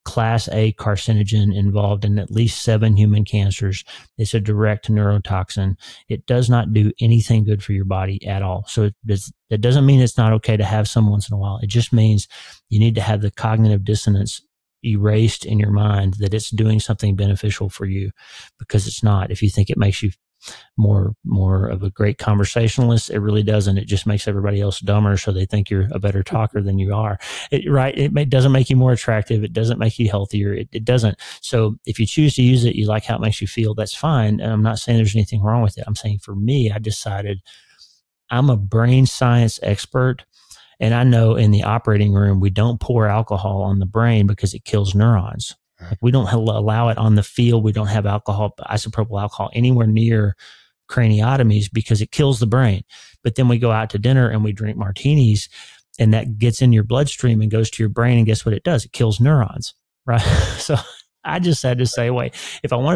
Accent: American